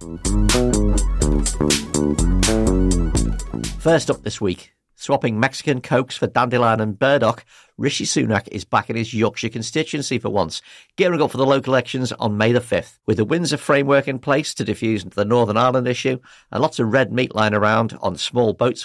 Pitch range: 110-135 Hz